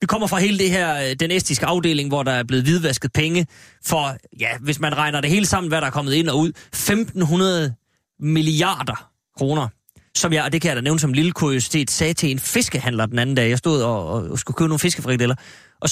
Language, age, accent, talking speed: Danish, 30-49, native, 225 wpm